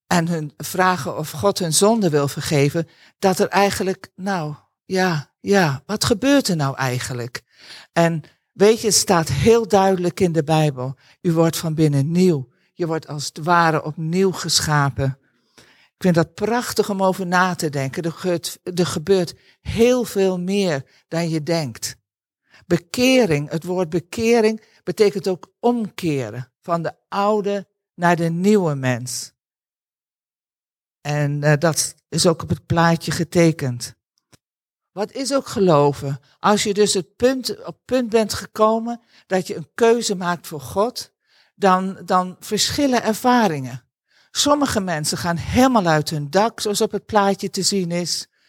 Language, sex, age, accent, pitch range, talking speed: Dutch, male, 50-69, Dutch, 155-205 Hz, 150 wpm